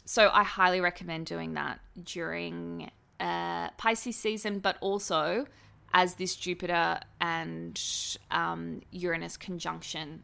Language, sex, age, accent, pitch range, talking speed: English, female, 20-39, Australian, 175-245 Hz, 110 wpm